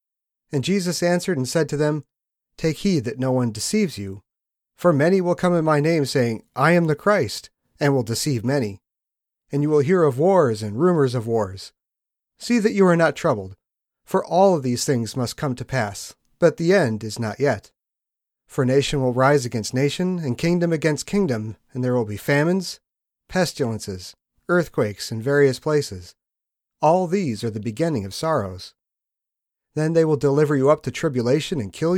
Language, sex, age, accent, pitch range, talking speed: English, male, 40-59, American, 125-170 Hz, 185 wpm